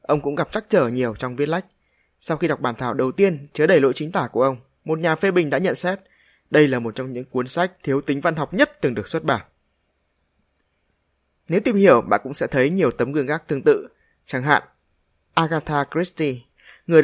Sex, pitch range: male, 125-165 Hz